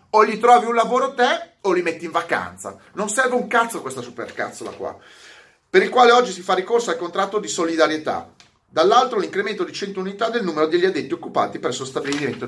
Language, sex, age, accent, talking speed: Italian, male, 30-49, native, 200 wpm